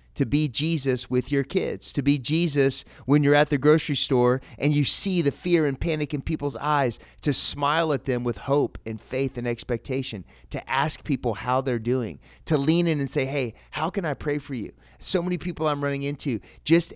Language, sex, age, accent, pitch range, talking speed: English, male, 30-49, American, 115-145 Hz, 210 wpm